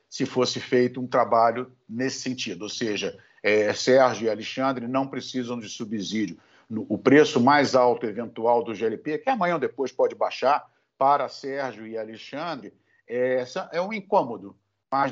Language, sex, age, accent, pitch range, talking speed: Portuguese, male, 50-69, Brazilian, 120-145 Hz, 165 wpm